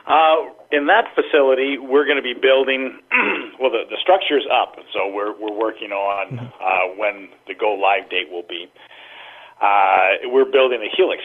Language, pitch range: English, 95-140 Hz